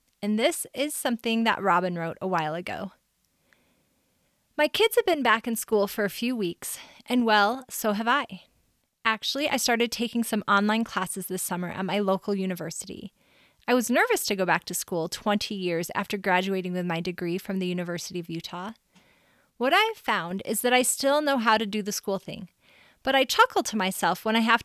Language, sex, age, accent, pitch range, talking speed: English, female, 30-49, American, 190-245 Hz, 200 wpm